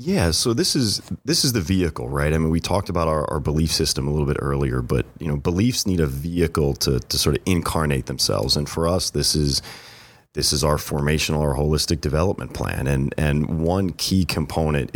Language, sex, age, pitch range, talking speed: English, male, 30-49, 70-85 Hz, 215 wpm